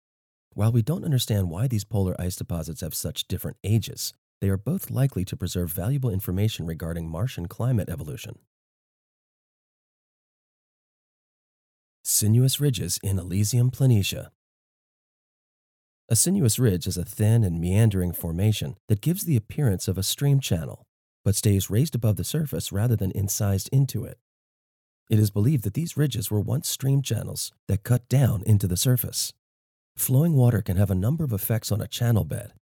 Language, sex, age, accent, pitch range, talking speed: English, male, 30-49, American, 95-125 Hz, 160 wpm